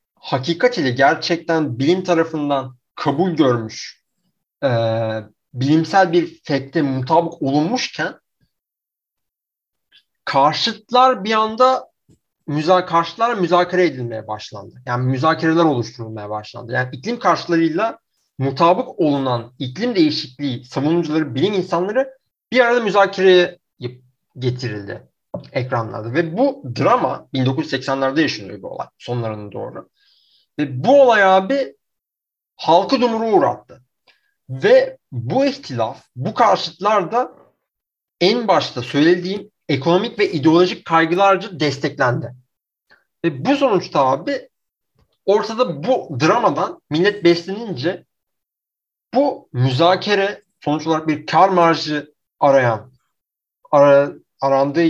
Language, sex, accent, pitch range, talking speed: Turkish, male, native, 135-195 Hz, 95 wpm